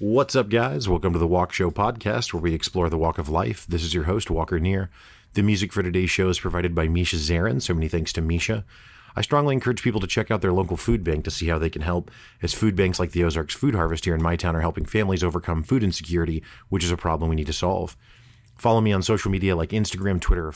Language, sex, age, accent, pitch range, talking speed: English, male, 30-49, American, 85-110 Hz, 260 wpm